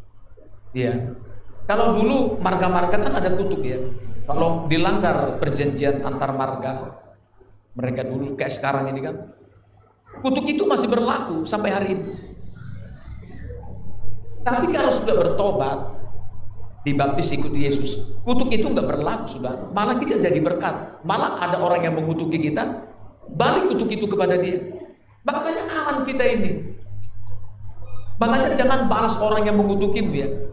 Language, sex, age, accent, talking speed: Indonesian, male, 50-69, native, 125 wpm